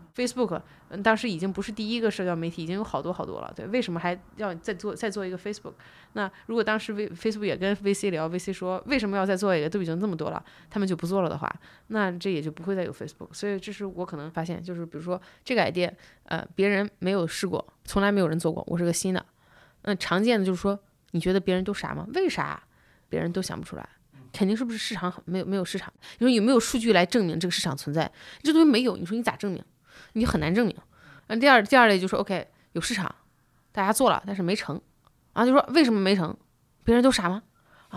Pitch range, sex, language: 180-230 Hz, female, Chinese